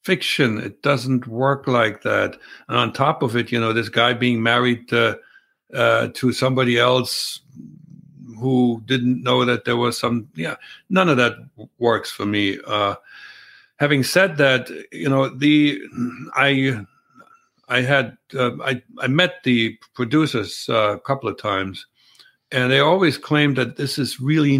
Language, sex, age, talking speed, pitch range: English, male, 60-79, 155 wpm, 120-140 Hz